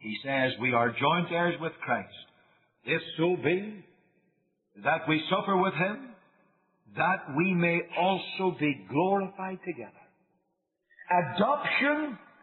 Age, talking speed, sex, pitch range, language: 50-69, 115 wpm, male, 170-260 Hz, English